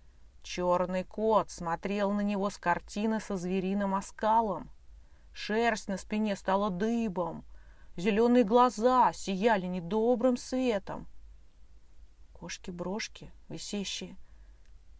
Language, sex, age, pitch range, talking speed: Russian, female, 20-39, 175-230 Hz, 90 wpm